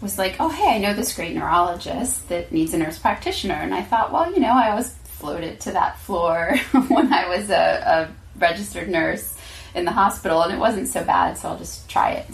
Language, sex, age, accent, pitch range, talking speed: English, female, 20-39, American, 150-170 Hz, 230 wpm